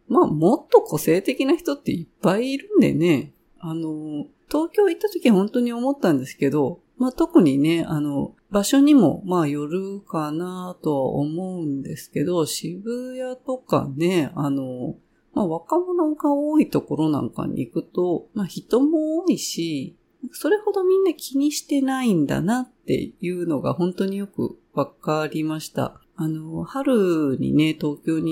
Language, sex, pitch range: Japanese, female, 155-255 Hz